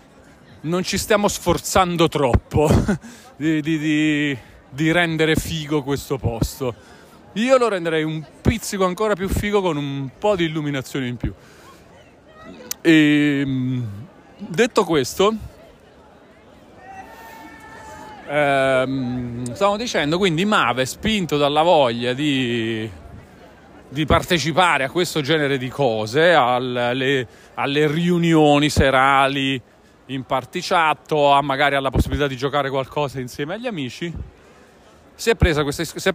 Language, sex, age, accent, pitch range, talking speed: Italian, male, 40-59, native, 125-165 Hz, 110 wpm